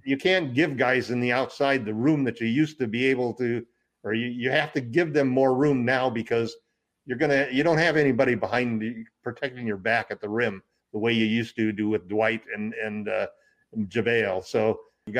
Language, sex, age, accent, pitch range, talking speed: English, male, 50-69, American, 115-135 Hz, 225 wpm